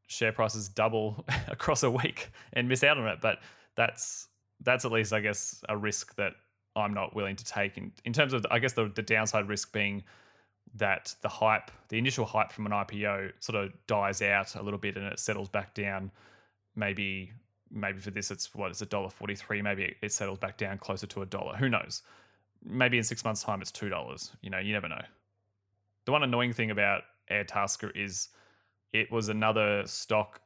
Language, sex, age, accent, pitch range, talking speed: English, male, 20-39, Australian, 100-110 Hz, 205 wpm